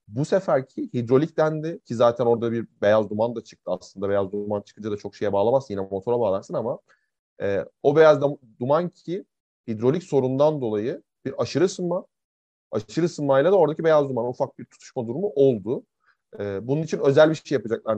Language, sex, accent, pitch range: Turkish, male, native, 115-160 Hz